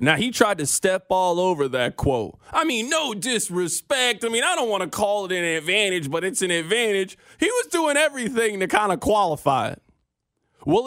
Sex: male